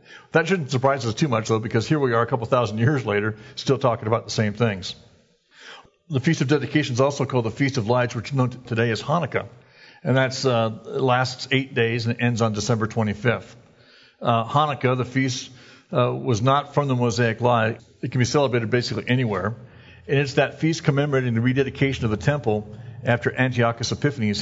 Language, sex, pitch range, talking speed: English, male, 110-130 Hz, 200 wpm